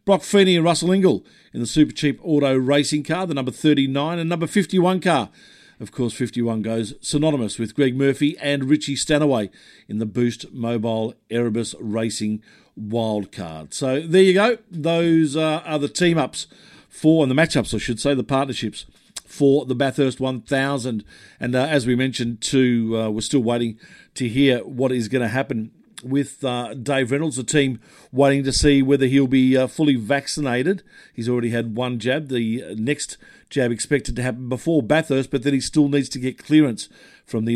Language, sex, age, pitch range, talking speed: English, male, 50-69, 115-145 Hz, 185 wpm